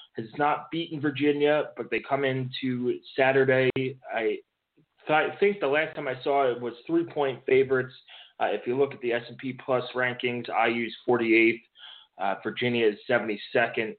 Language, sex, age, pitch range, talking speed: English, male, 20-39, 115-135 Hz, 165 wpm